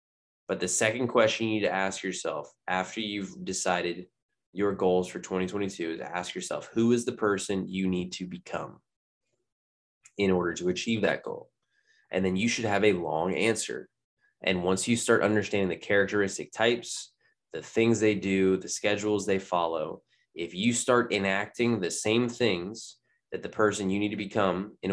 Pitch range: 95-120 Hz